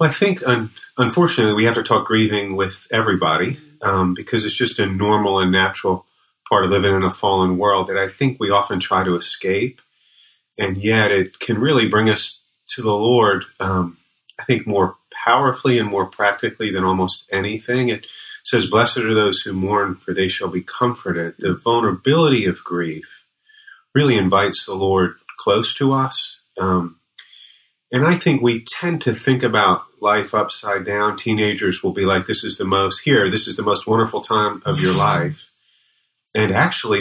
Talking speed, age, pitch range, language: 175 wpm, 40-59, 95-115 Hz, English